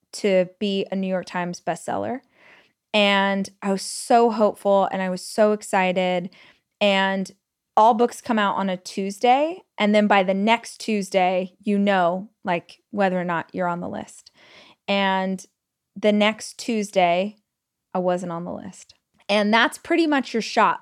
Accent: American